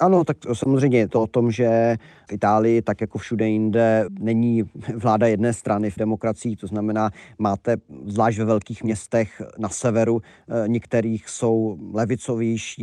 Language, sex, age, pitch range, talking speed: Czech, male, 40-59, 105-115 Hz, 155 wpm